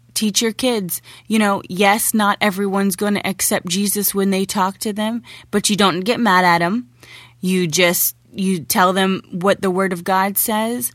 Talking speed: 190 wpm